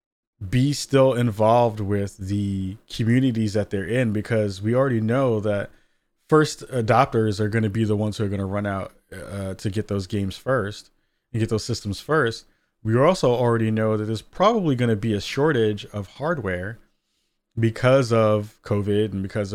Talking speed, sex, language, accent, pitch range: 180 wpm, male, English, American, 100-120 Hz